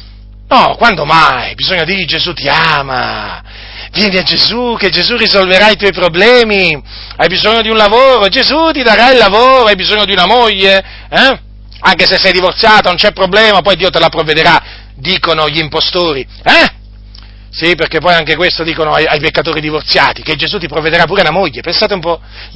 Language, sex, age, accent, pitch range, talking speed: Italian, male, 40-59, native, 155-235 Hz, 180 wpm